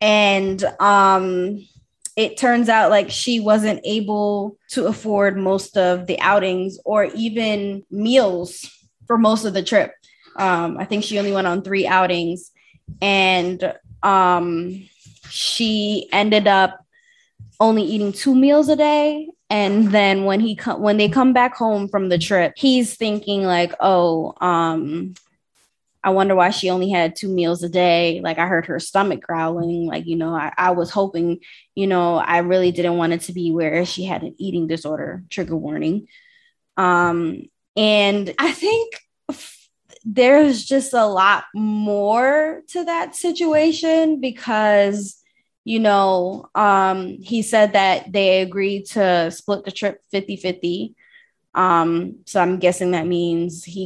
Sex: female